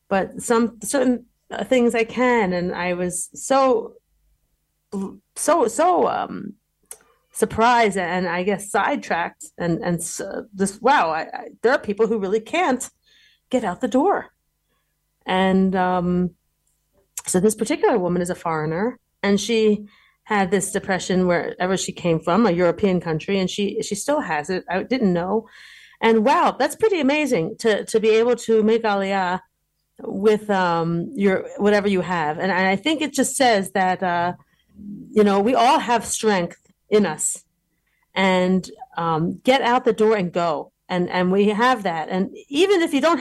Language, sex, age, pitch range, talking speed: English, female, 30-49, 185-265 Hz, 160 wpm